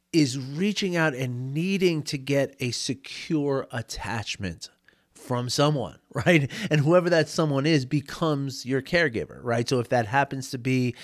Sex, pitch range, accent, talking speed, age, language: male, 115-150 Hz, American, 150 wpm, 30-49, English